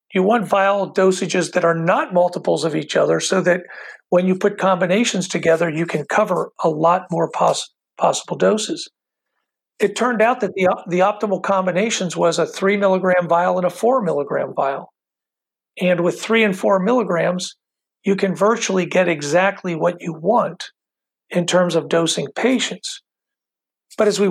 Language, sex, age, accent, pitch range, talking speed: English, male, 50-69, American, 170-195 Hz, 165 wpm